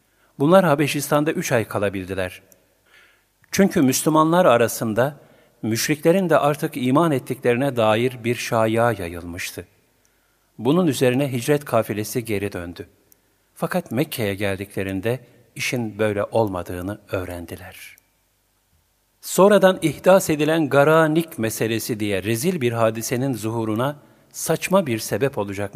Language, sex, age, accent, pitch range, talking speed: Turkish, male, 50-69, native, 105-150 Hz, 100 wpm